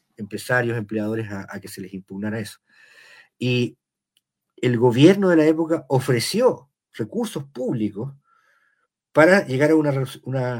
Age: 50-69